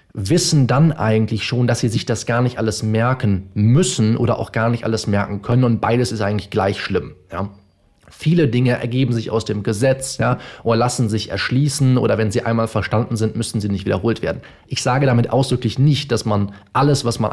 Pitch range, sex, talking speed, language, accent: 105-135 Hz, male, 200 wpm, German, German